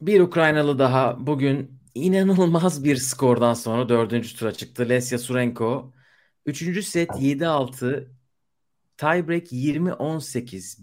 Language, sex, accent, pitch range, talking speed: Turkish, male, native, 115-145 Hz, 100 wpm